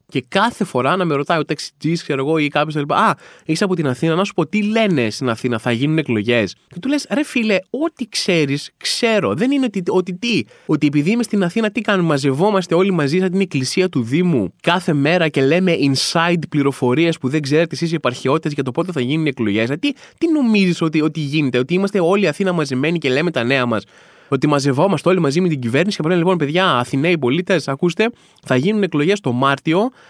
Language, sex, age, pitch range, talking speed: Greek, male, 20-39, 145-205 Hz, 220 wpm